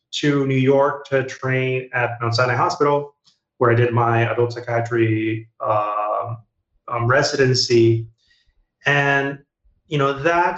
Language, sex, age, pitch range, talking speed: English, male, 30-49, 110-130 Hz, 125 wpm